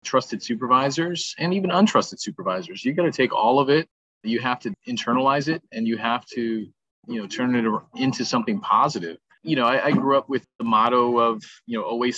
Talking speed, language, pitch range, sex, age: 205 wpm, English, 115-150 Hz, male, 30-49